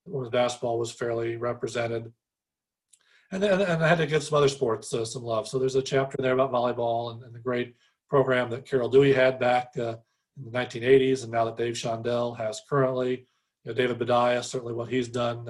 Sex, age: male, 40-59